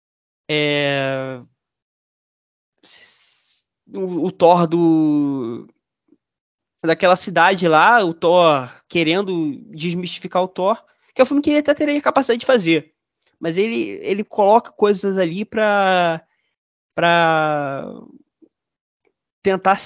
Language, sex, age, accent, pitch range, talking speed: Portuguese, male, 20-39, Brazilian, 165-230 Hz, 95 wpm